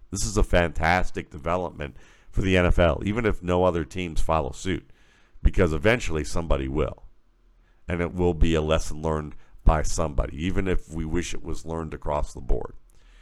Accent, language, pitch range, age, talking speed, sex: American, English, 75-95 Hz, 50-69, 175 wpm, male